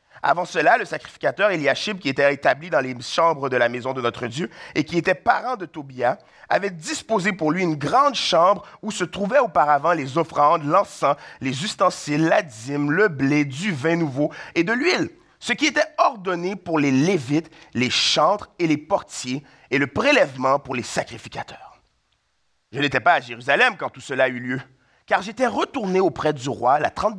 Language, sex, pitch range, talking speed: French, male, 135-210 Hz, 185 wpm